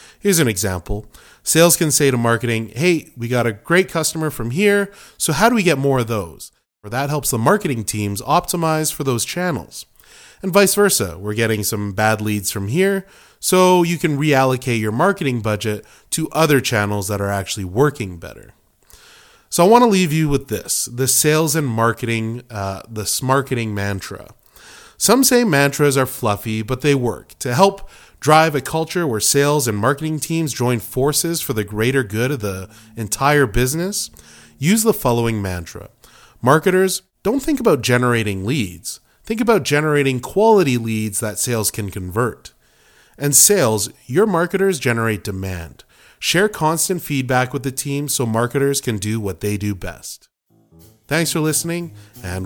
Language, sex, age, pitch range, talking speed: English, male, 30-49, 110-160 Hz, 165 wpm